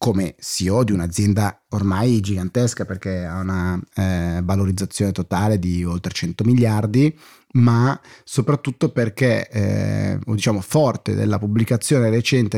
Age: 30-49